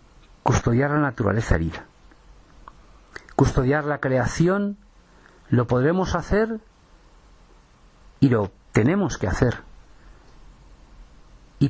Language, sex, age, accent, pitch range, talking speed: Spanish, male, 50-69, Spanish, 90-150 Hz, 80 wpm